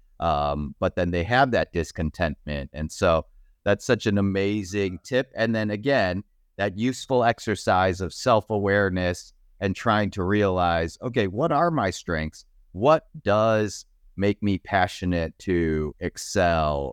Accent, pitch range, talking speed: American, 85-110 Hz, 135 wpm